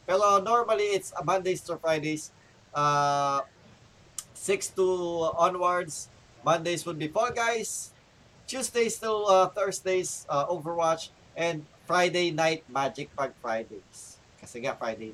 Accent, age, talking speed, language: native, 20-39, 125 wpm, Filipino